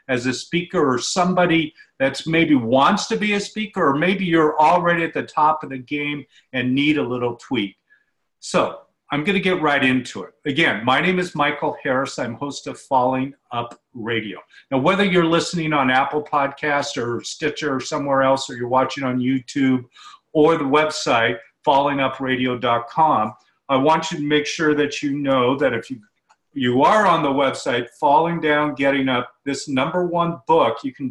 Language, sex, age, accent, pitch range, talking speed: English, male, 50-69, American, 130-155 Hz, 185 wpm